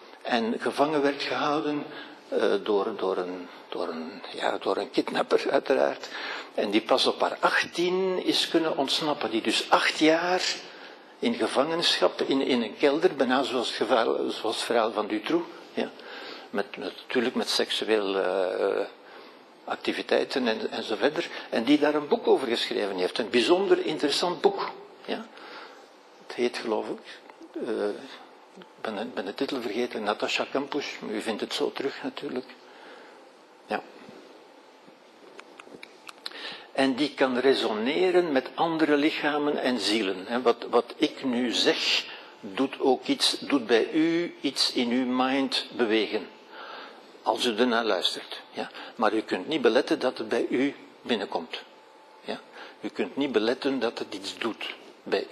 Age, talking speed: 60-79, 150 wpm